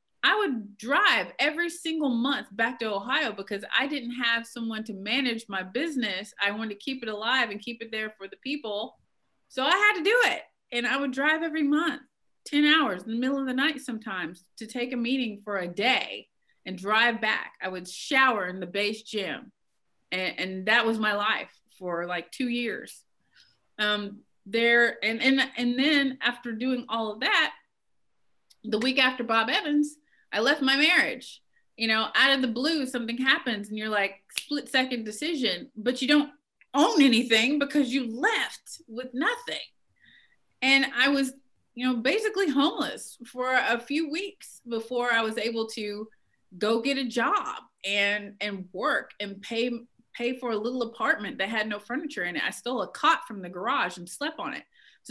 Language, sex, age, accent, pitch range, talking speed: English, female, 30-49, American, 215-275 Hz, 185 wpm